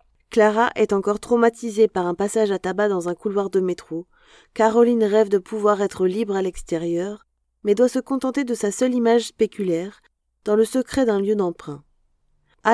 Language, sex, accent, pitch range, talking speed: French, female, French, 190-230 Hz, 180 wpm